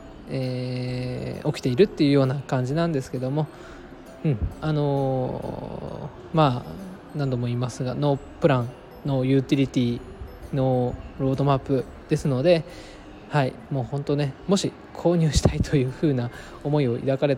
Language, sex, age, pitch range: Japanese, male, 20-39, 125-155 Hz